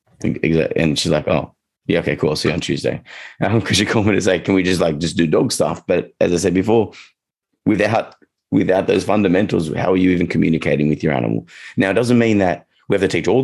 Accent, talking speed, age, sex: Australian, 240 wpm, 30-49, male